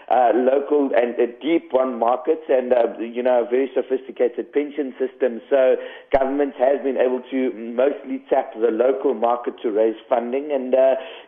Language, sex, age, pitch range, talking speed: English, male, 50-69, 130-160 Hz, 170 wpm